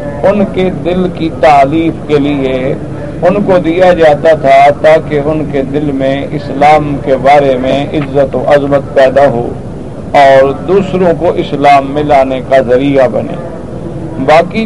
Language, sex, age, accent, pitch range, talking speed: English, male, 50-69, Indian, 145-180 Hz, 145 wpm